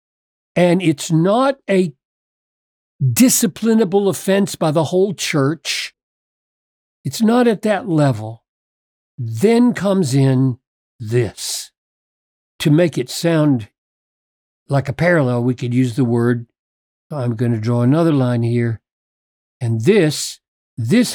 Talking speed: 115 wpm